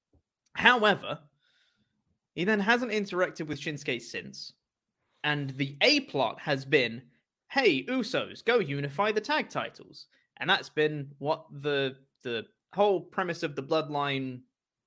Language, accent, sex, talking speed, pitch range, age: English, British, male, 125 wpm, 140-190 Hz, 20-39